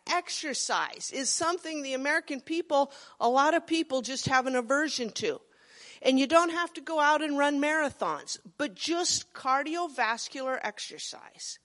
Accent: American